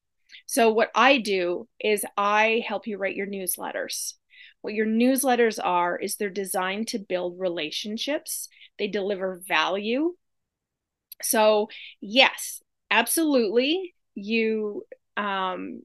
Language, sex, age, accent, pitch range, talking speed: English, female, 30-49, American, 195-250 Hz, 110 wpm